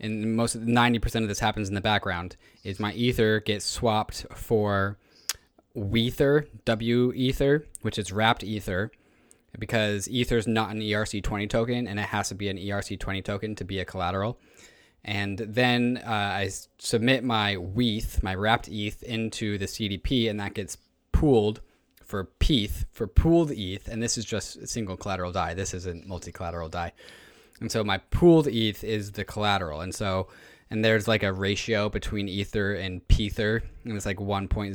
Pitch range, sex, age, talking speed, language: 95-110 Hz, male, 20-39, 175 wpm, English